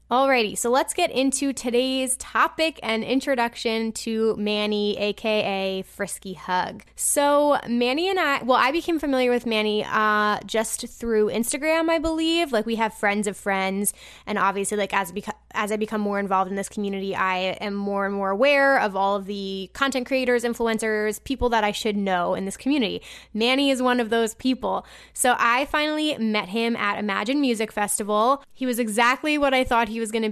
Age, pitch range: 20-39, 205-255 Hz